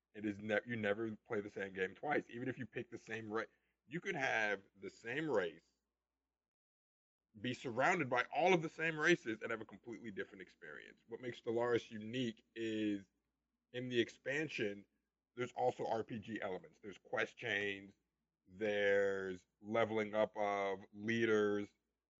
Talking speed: 155 wpm